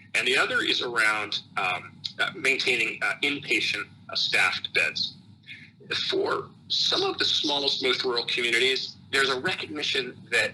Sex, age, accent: male, 40-59, American